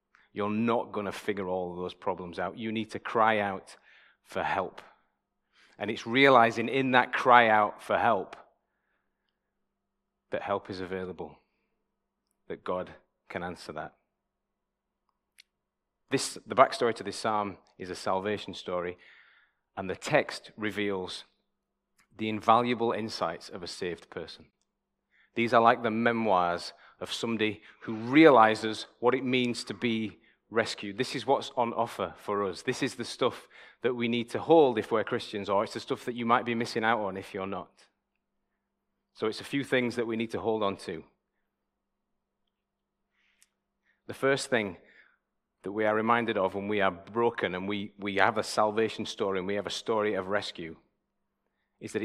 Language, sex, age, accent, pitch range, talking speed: English, male, 30-49, British, 100-120 Hz, 165 wpm